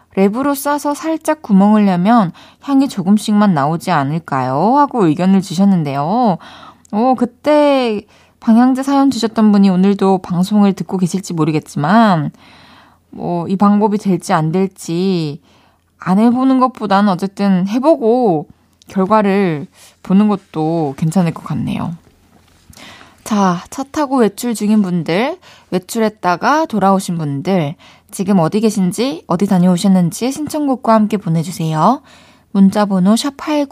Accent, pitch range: native, 175-245 Hz